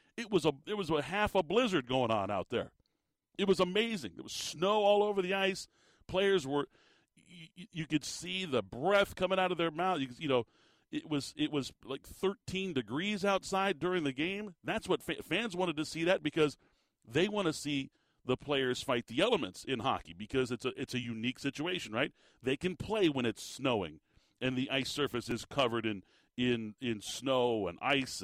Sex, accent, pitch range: male, American, 120-165 Hz